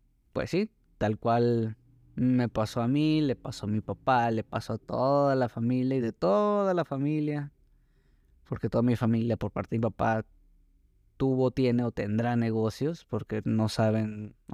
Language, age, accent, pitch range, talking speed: Spanish, 20-39, Mexican, 110-130 Hz, 170 wpm